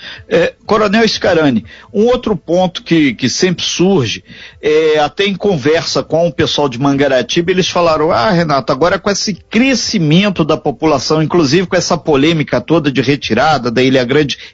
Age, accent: 50-69, Brazilian